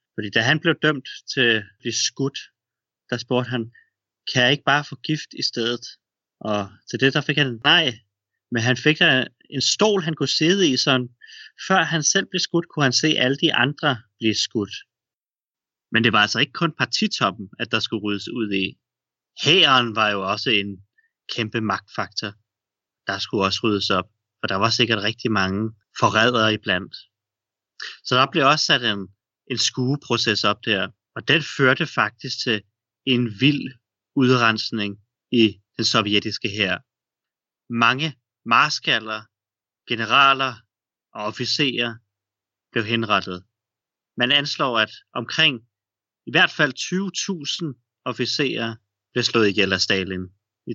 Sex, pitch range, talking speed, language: male, 105-140 Hz, 150 wpm, Danish